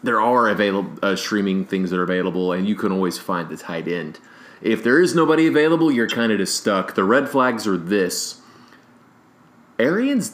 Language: English